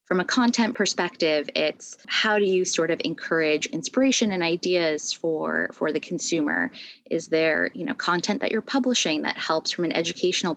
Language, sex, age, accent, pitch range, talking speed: English, female, 20-39, American, 160-190 Hz, 175 wpm